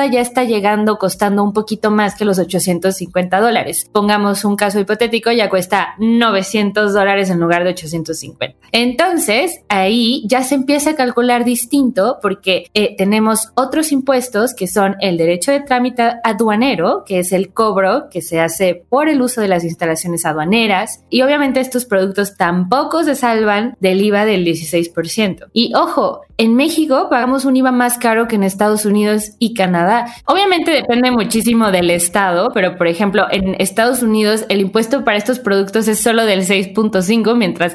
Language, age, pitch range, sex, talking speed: Spanish, 20-39, 195-250 Hz, female, 165 wpm